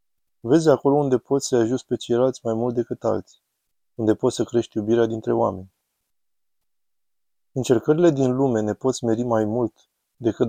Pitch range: 110-125 Hz